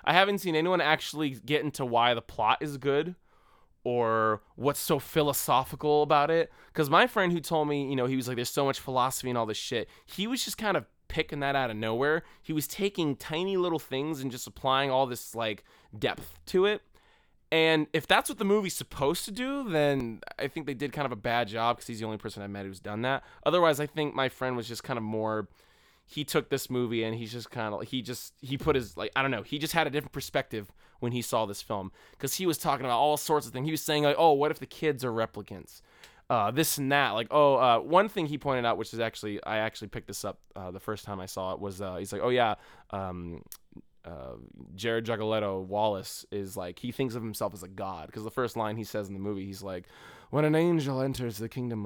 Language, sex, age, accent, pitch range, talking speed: English, male, 20-39, American, 110-150 Hz, 250 wpm